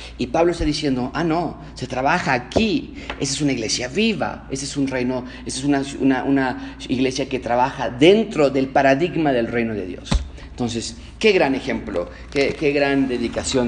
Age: 40-59